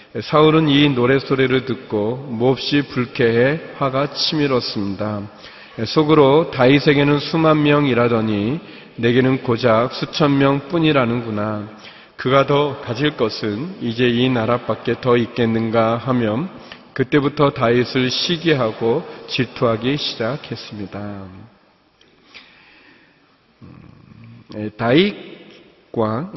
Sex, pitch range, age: male, 110-145 Hz, 40-59